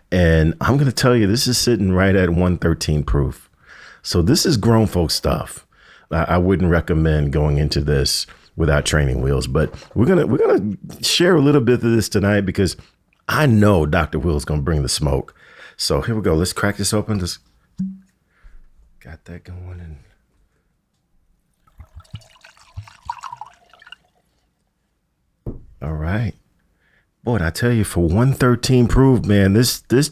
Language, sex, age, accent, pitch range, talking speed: English, male, 50-69, American, 85-110 Hz, 155 wpm